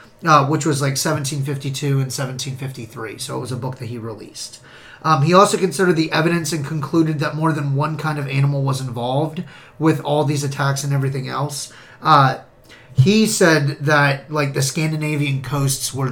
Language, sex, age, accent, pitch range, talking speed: English, male, 30-49, American, 135-160 Hz, 180 wpm